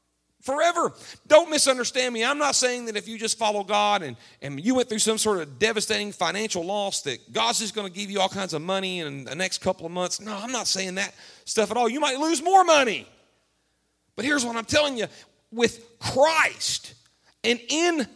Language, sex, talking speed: English, male, 210 wpm